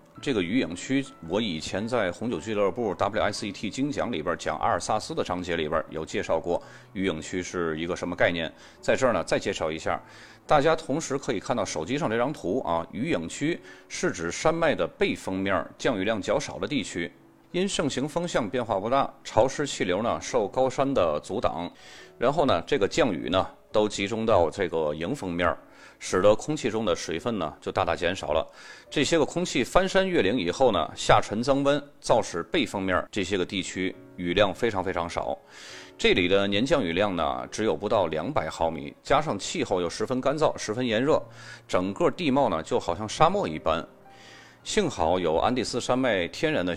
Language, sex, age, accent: Chinese, male, 30-49, native